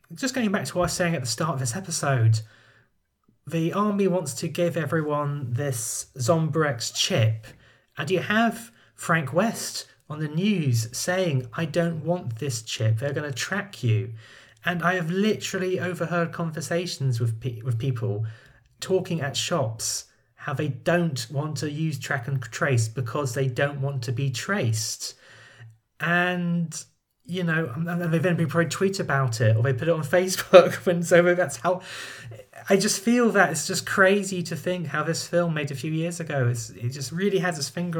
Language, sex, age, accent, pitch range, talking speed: English, male, 30-49, British, 125-170 Hz, 180 wpm